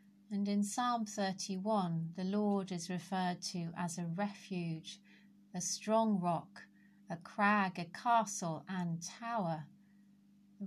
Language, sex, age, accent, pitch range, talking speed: English, female, 40-59, British, 180-210 Hz, 125 wpm